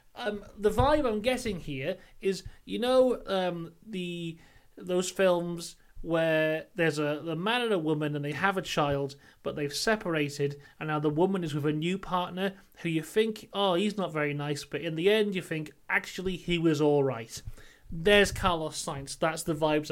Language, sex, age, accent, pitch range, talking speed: English, male, 30-49, British, 160-230 Hz, 190 wpm